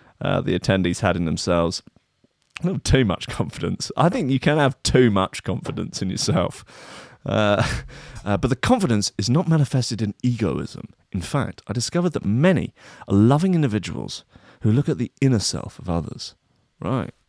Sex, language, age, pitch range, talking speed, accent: male, English, 30-49, 100-135 Hz, 170 wpm, British